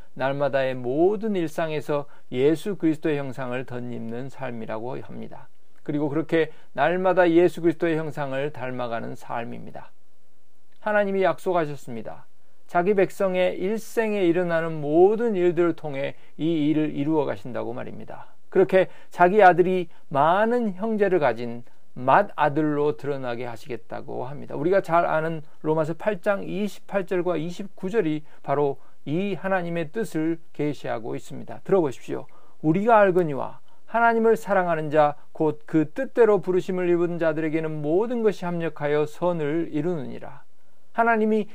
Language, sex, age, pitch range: Korean, male, 40-59, 150-195 Hz